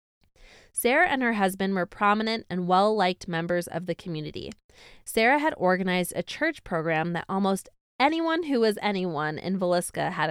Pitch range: 180-230 Hz